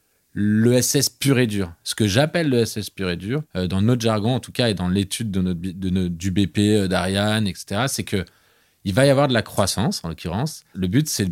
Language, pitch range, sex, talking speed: French, 95-130 Hz, male, 195 wpm